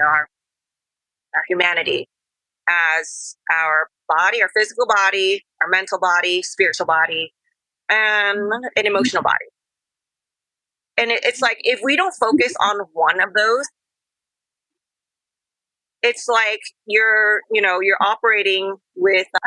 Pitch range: 185-255 Hz